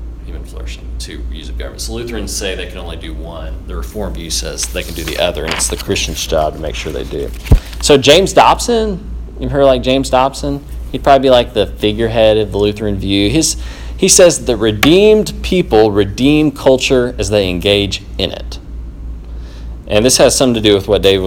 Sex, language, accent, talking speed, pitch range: male, English, American, 200 wpm, 75-110 Hz